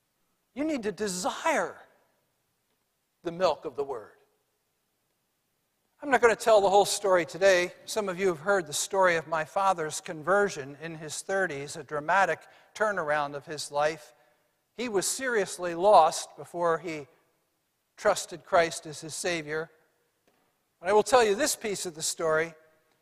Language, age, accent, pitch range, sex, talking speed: English, 60-79, American, 170-250 Hz, male, 155 wpm